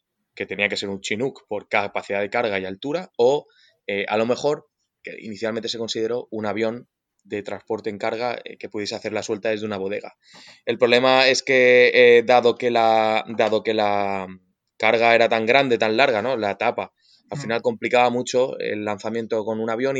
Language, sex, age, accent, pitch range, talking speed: Spanish, male, 20-39, Spanish, 105-130 Hz, 195 wpm